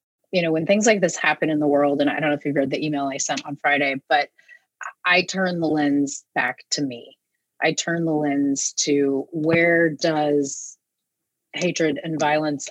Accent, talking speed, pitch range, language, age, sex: American, 195 wpm, 150-180 Hz, English, 30-49, female